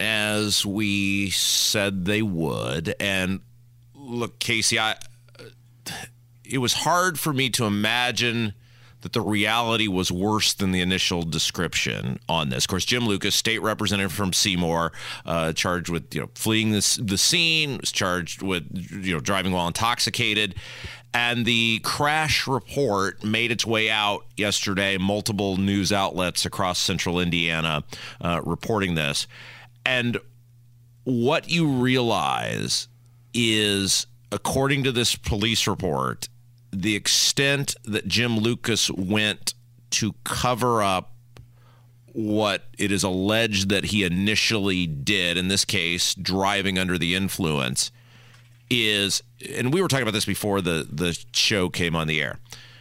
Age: 30-49